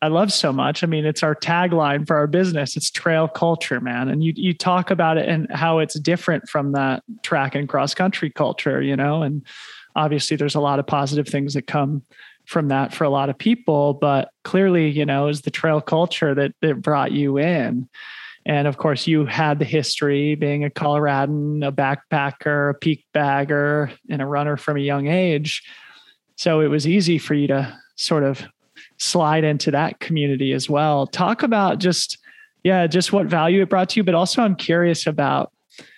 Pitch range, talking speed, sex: 145-170 Hz, 195 wpm, male